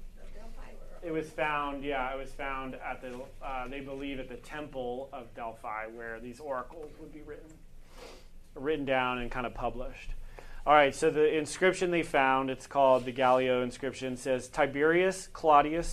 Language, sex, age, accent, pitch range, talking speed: English, male, 30-49, American, 130-160 Hz, 165 wpm